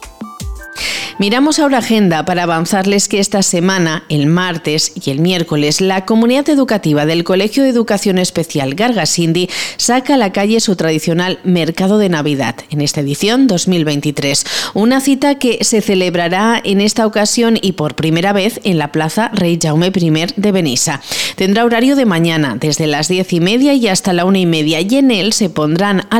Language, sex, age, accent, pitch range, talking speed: Spanish, female, 40-59, Spanish, 160-210 Hz, 175 wpm